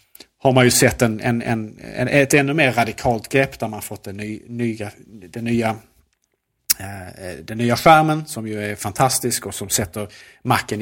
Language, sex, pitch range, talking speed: Swedish, male, 100-120 Hz, 170 wpm